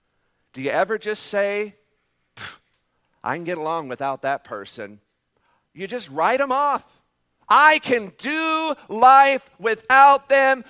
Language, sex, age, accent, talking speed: English, male, 50-69, American, 130 wpm